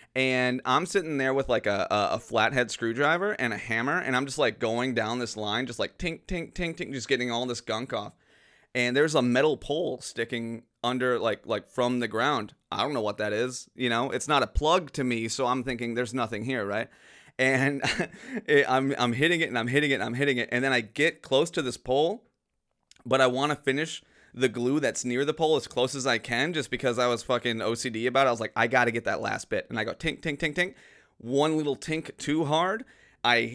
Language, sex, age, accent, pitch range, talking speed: English, male, 30-49, American, 120-150 Hz, 240 wpm